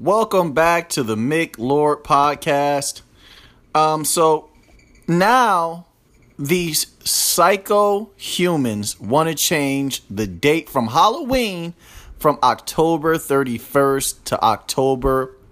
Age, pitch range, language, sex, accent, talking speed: 30-49, 135-180 Hz, English, male, American, 95 wpm